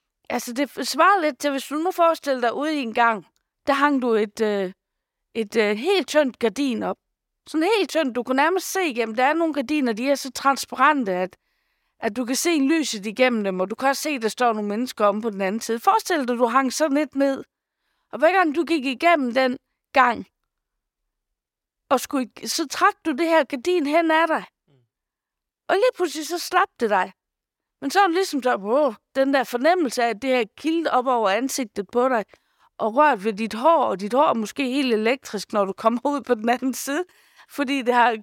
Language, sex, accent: Danish, female, native